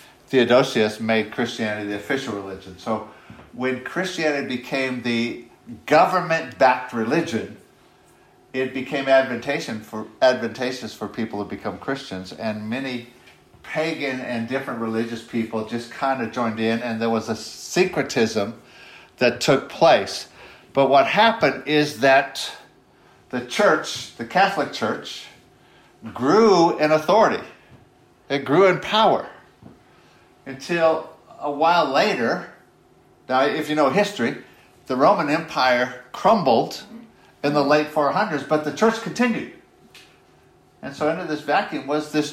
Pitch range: 120-160 Hz